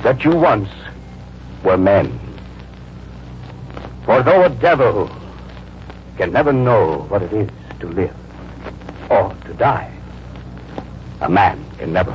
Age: 60-79